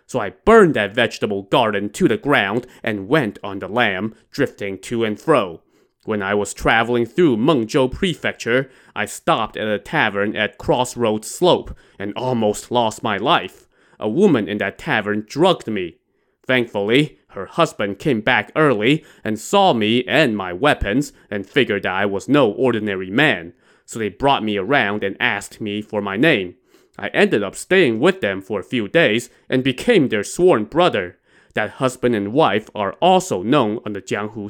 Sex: male